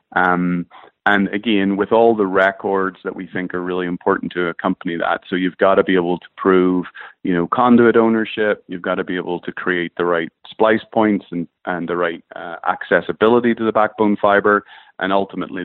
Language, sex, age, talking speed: English, male, 30-49, 195 wpm